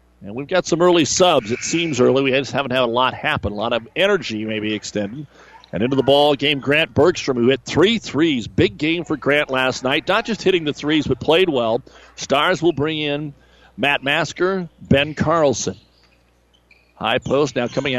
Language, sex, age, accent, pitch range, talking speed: English, male, 50-69, American, 125-155 Hz, 200 wpm